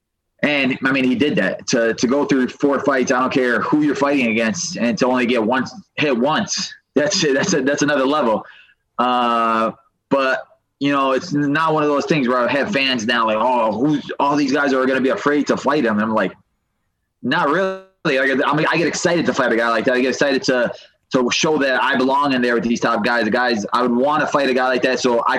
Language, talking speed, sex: English, 250 wpm, male